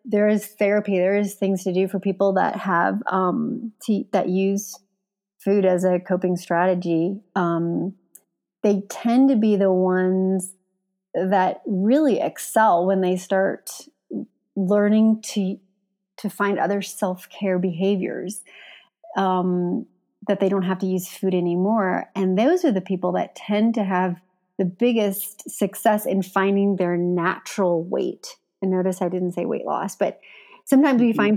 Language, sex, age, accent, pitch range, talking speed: English, female, 30-49, American, 185-215 Hz, 150 wpm